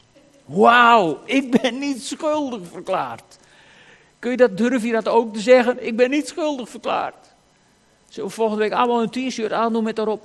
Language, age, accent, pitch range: Dutch, 50-69, Dutch, 185-235 Hz